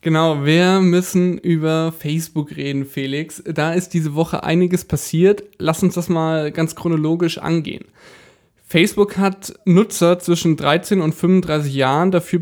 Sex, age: male, 10-29